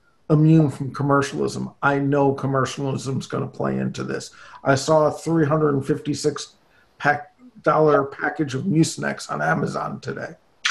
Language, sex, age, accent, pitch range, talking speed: English, male, 50-69, American, 140-165 Hz, 125 wpm